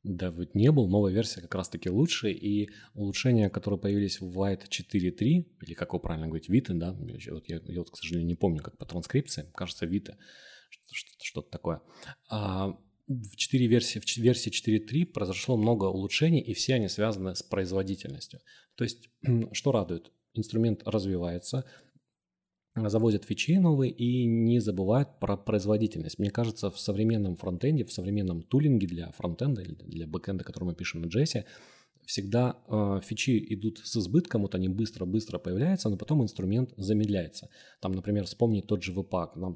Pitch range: 95-120 Hz